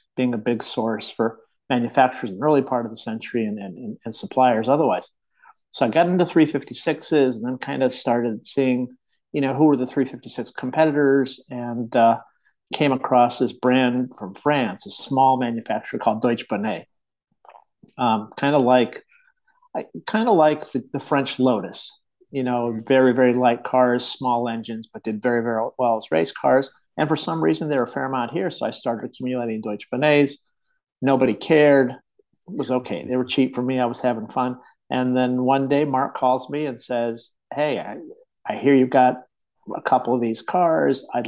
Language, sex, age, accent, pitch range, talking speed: English, male, 50-69, American, 120-140 Hz, 180 wpm